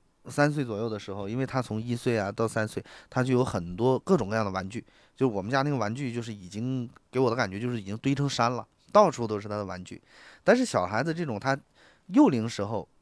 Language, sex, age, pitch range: Chinese, male, 20-39, 105-140 Hz